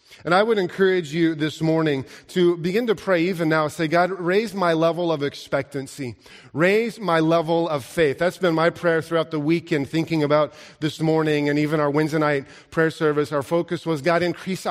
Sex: male